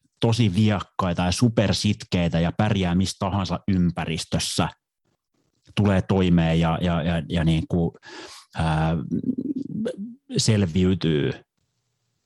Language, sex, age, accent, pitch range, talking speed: Finnish, male, 30-49, native, 85-100 Hz, 95 wpm